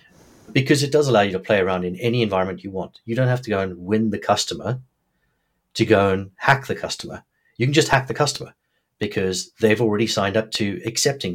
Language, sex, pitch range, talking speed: English, male, 100-130 Hz, 215 wpm